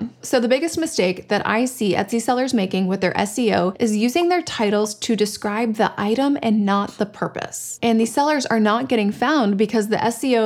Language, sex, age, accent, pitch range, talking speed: English, female, 20-39, American, 205-245 Hz, 200 wpm